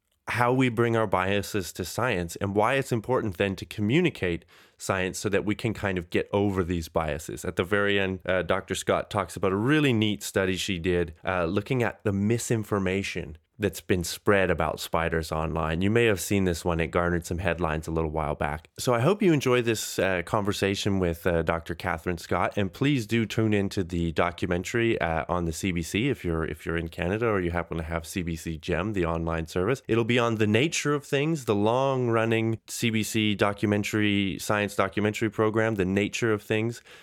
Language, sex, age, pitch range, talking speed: English, male, 20-39, 90-110 Hz, 200 wpm